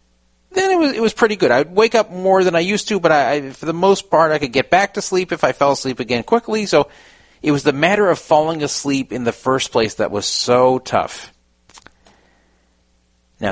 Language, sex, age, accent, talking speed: English, male, 40-59, American, 215 wpm